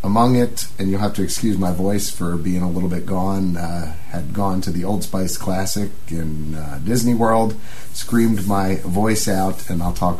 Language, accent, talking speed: English, American, 200 wpm